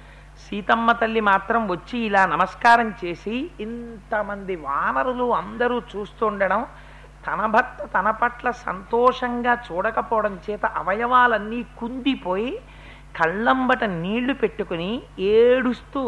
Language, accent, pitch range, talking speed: Telugu, native, 190-250 Hz, 95 wpm